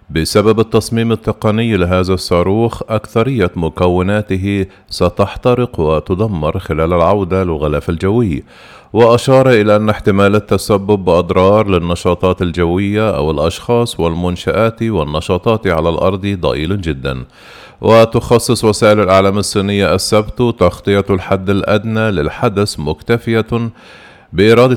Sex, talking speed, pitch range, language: male, 95 wpm, 90-110 Hz, Arabic